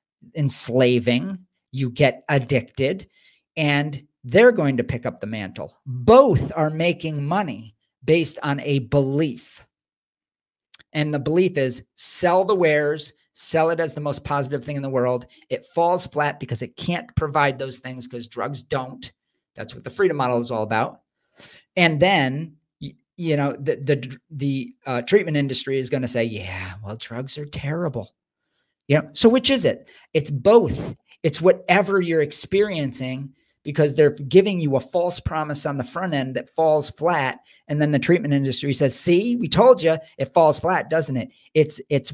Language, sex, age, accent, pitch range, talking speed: English, male, 50-69, American, 130-165 Hz, 170 wpm